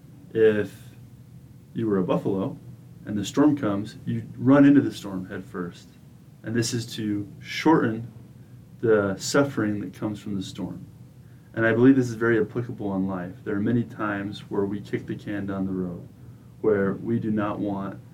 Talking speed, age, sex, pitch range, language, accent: 180 wpm, 30-49, male, 100-120 Hz, English, American